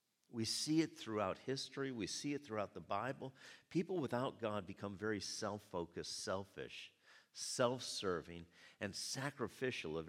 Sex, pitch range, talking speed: male, 100-135 Hz, 130 wpm